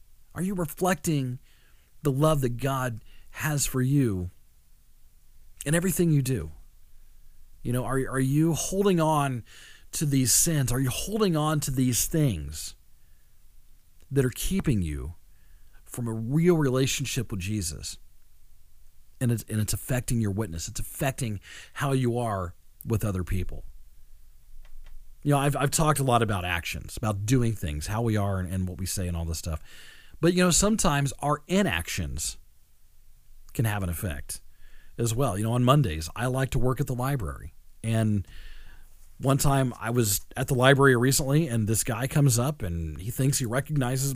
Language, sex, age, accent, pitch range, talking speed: English, male, 40-59, American, 85-140 Hz, 165 wpm